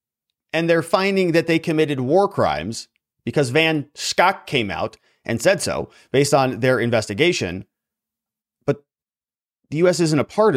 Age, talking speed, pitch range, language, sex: 30-49, 150 wpm, 125-175 Hz, English, male